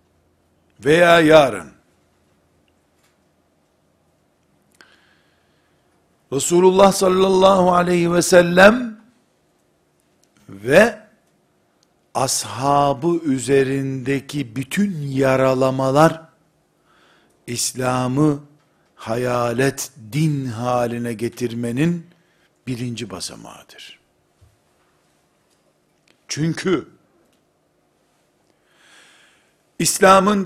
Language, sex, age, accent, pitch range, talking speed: Turkish, male, 60-79, native, 120-185 Hz, 40 wpm